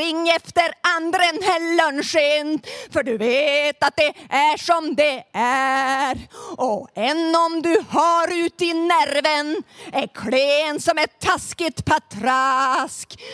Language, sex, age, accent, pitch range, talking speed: Swedish, female, 30-49, native, 285-335 Hz, 125 wpm